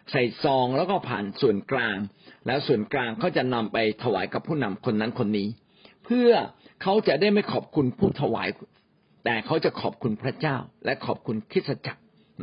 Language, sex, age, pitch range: Thai, male, 60-79, 115-165 Hz